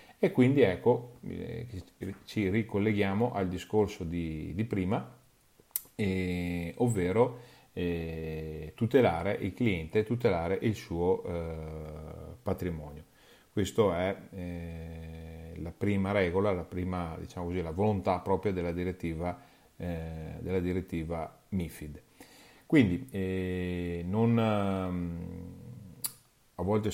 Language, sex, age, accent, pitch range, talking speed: Italian, male, 40-59, native, 85-110 Hz, 100 wpm